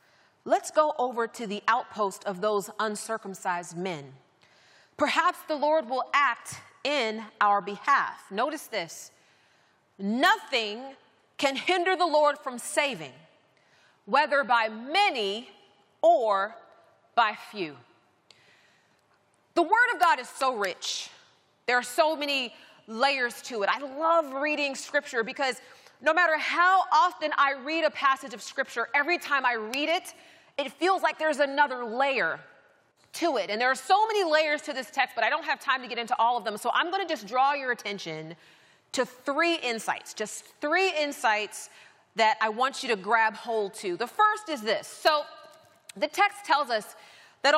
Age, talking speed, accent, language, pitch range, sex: 30-49, 160 wpm, American, Dutch, 225-315 Hz, female